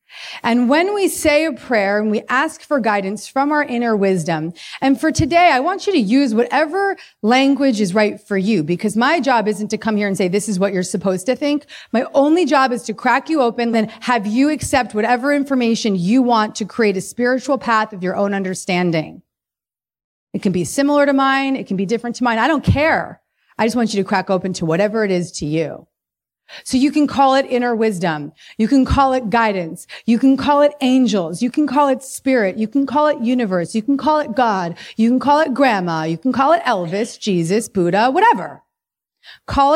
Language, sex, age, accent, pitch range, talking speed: English, female, 30-49, American, 195-270 Hz, 215 wpm